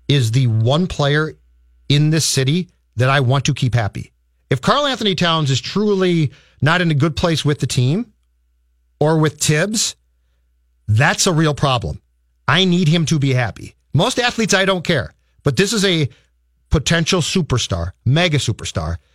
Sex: male